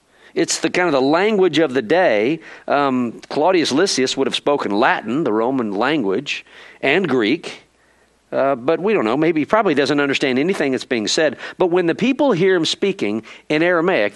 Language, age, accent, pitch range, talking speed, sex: English, 50-69, American, 135-200 Hz, 185 wpm, male